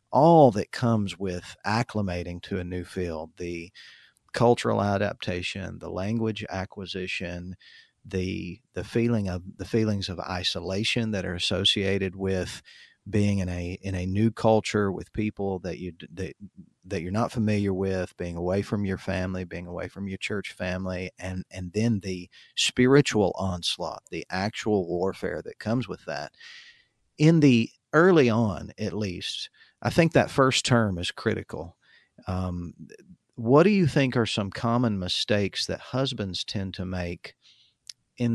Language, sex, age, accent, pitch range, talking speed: English, male, 50-69, American, 90-110 Hz, 150 wpm